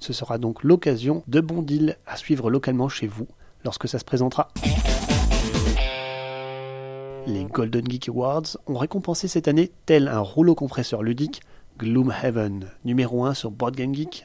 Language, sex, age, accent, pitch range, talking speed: French, male, 30-49, French, 120-155 Hz, 145 wpm